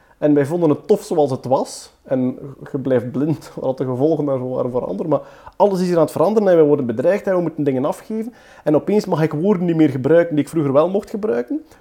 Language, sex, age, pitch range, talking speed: Dutch, male, 30-49, 135-175 Hz, 245 wpm